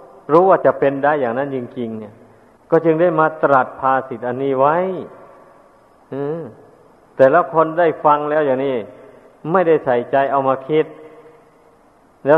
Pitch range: 130-155 Hz